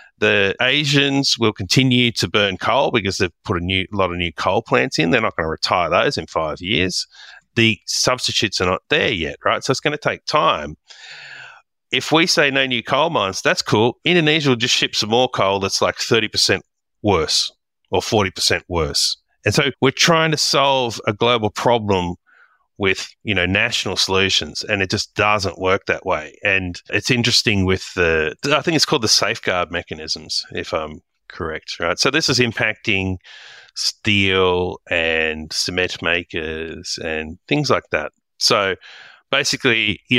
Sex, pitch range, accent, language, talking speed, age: male, 90-125 Hz, Australian, English, 175 wpm, 30-49